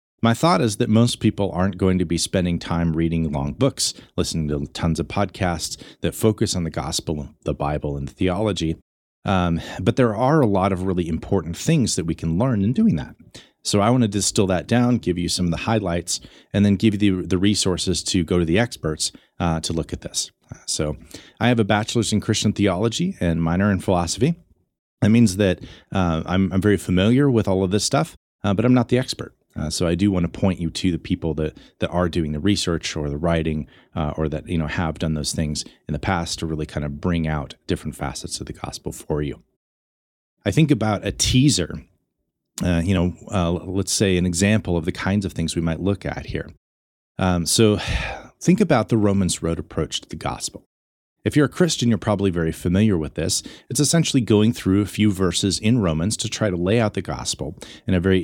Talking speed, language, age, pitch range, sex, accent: 220 wpm, English, 30-49, 80-105 Hz, male, American